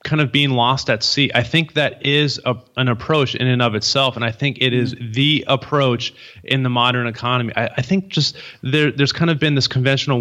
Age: 30-49